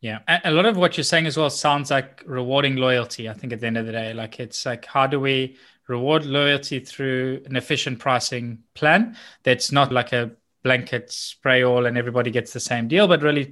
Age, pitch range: 20-39, 125-145 Hz